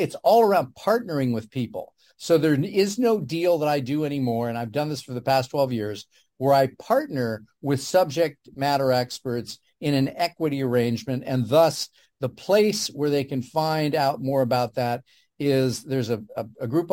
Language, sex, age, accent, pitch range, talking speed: English, male, 50-69, American, 130-170 Hz, 185 wpm